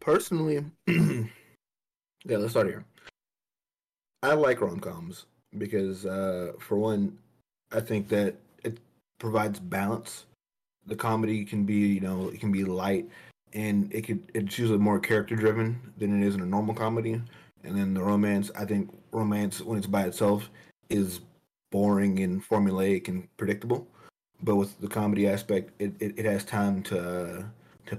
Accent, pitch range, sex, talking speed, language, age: American, 100-110 Hz, male, 155 wpm, English, 30-49